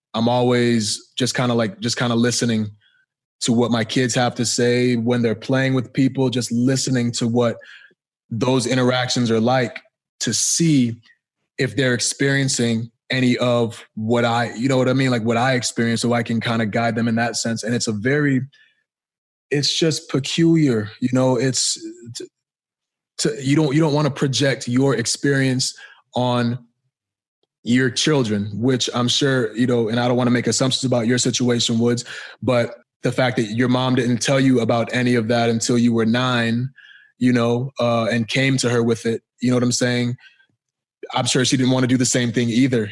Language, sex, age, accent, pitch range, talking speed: English, male, 20-39, American, 120-130 Hz, 195 wpm